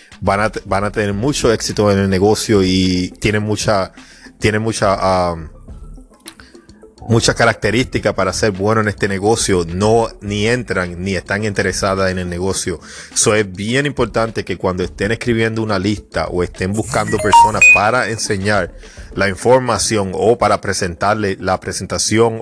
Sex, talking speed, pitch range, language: male, 155 wpm, 95-115 Hz, English